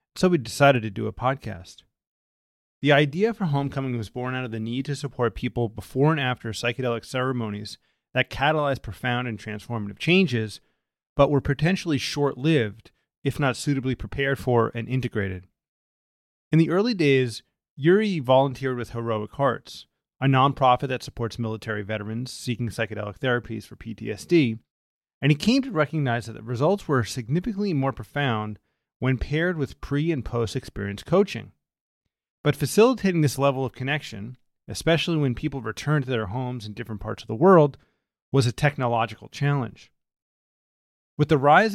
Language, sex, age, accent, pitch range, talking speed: English, male, 30-49, American, 115-145 Hz, 155 wpm